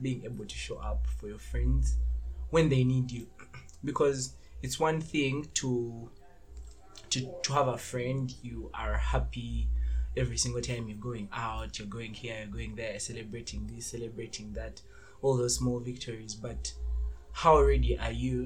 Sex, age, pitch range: male, 20-39, 105-135 Hz